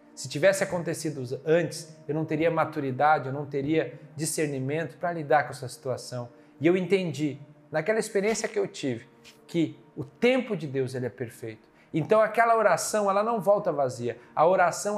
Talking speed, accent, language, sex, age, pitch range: 165 wpm, Brazilian, Portuguese, male, 40-59, 135-185 Hz